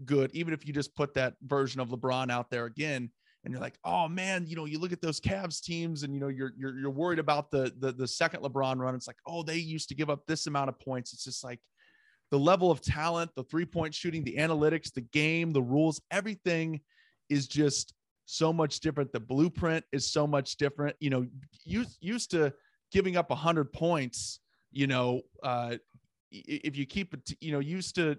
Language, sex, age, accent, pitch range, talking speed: English, male, 30-49, American, 135-165 Hz, 215 wpm